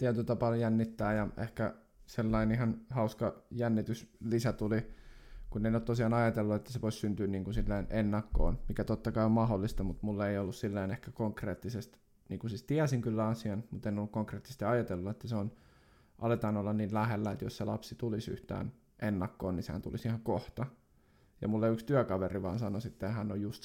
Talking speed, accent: 185 wpm, native